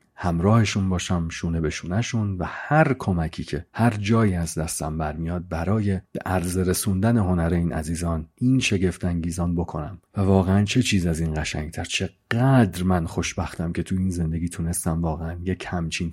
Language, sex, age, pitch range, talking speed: Persian, male, 40-59, 85-100 Hz, 160 wpm